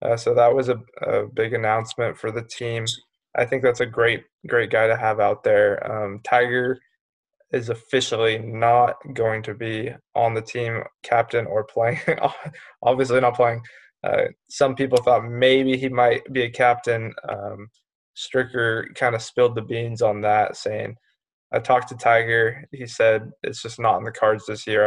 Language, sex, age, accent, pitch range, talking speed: English, male, 20-39, American, 110-125 Hz, 175 wpm